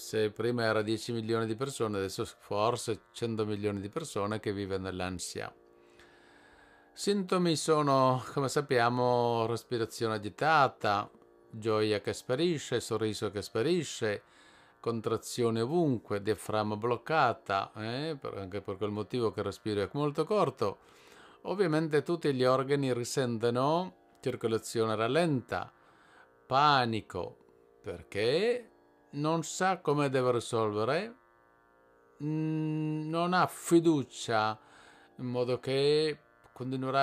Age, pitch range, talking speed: 50-69, 115-150 Hz, 105 wpm